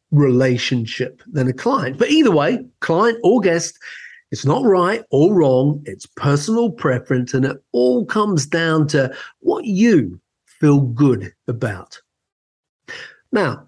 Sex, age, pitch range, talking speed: male, 50-69, 135-205 Hz, 130 wpm